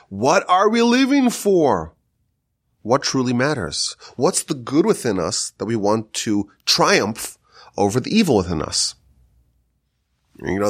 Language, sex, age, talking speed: English, male, 30-49, 140 wpm